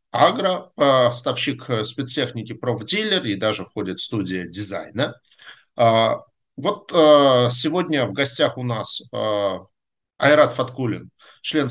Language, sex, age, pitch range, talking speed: Russian, male, 50-69, 105-135 Hz, 95 wpm